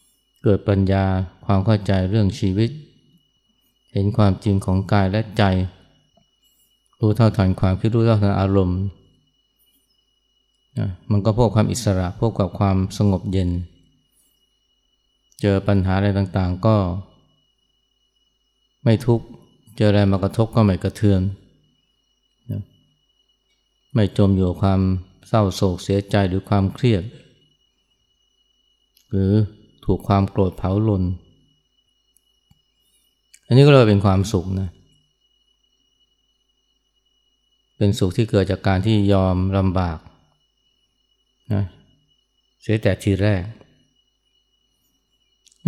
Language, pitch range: Thai, 95-130 Hz